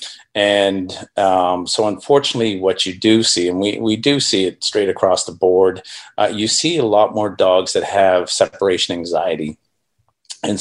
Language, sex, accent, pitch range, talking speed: English, male, American, 90-105 Hz, 170 wpm